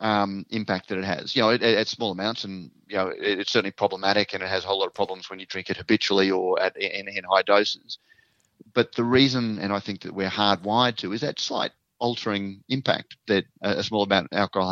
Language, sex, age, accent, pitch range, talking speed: English, male, 30-49, Australian, 100-120 Hz, 230 wpm